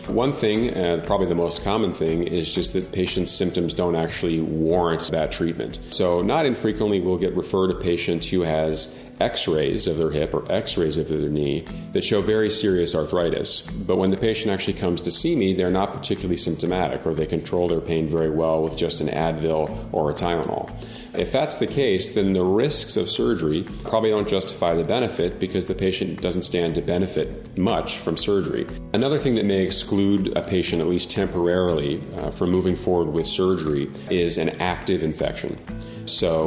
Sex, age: male, 40-59